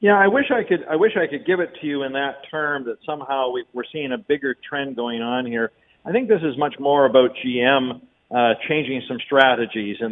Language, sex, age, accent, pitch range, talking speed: English, male, 50-69, American, 125-150 Hz, 230 wpm